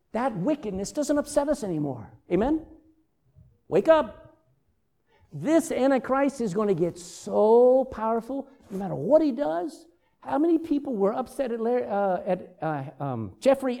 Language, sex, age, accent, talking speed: English, male, 50-69, American, 145 wpm